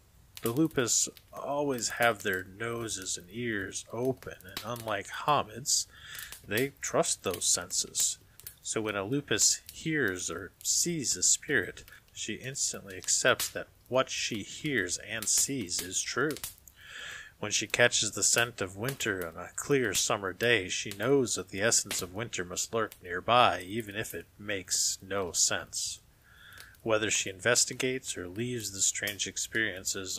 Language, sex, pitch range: English, male, 95-120 Hz